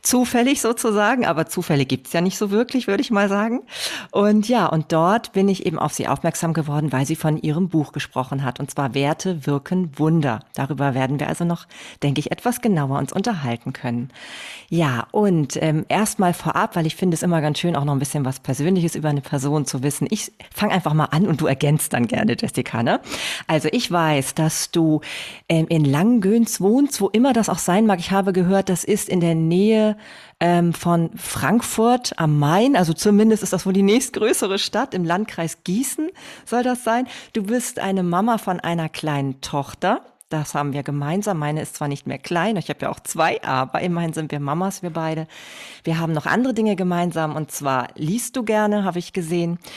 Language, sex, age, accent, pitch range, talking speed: German, female, 40-59, German, 150-205 Hz, 205 wpm